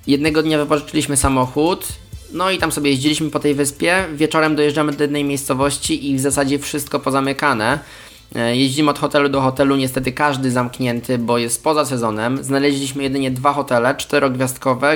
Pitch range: 130-150 Hz